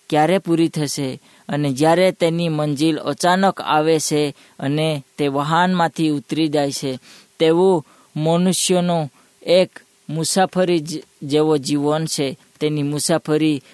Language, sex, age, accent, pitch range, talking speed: Hindi, female, 20-39, native, 150-170 Hz, 80 wpm